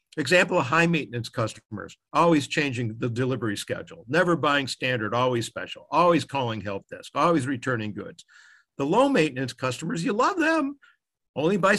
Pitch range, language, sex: 120-160 Hz, English, male